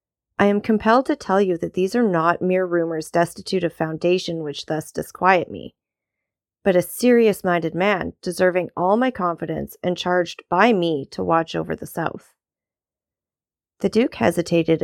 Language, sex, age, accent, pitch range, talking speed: English, female, 30-49, American, 160-215 Hz, 160 wpm